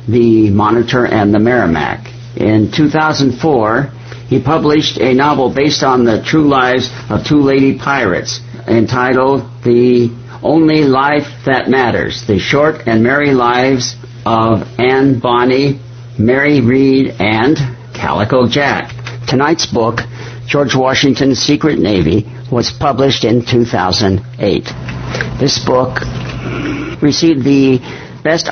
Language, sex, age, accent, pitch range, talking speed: English, male, 60-79, American, 120-140 Hz, 115 wpm